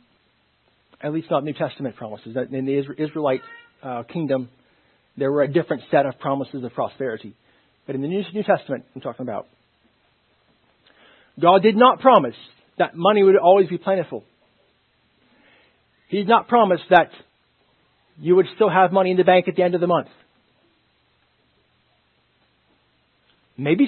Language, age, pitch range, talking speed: English, 40-59, 145-205 Hz, 145 wpm